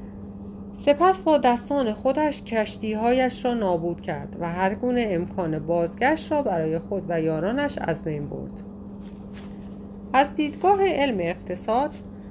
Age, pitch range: 30-49, 145-240 Hz